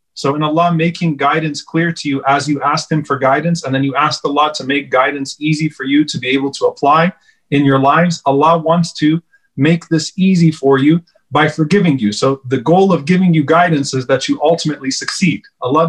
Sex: male